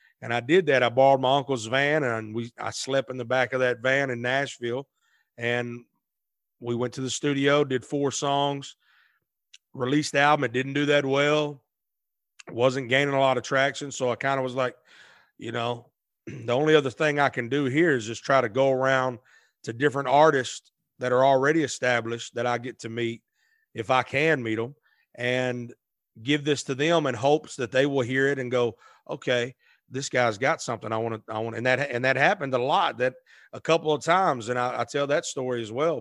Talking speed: 210 wpm